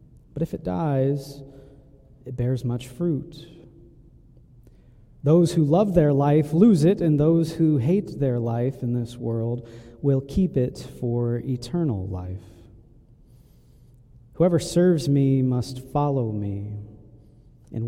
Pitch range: 115-140 Hz